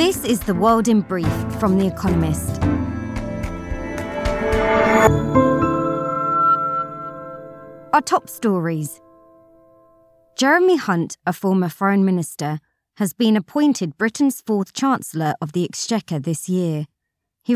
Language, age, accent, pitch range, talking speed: English, 20-39, British, 165-230 Hz, 105 wpm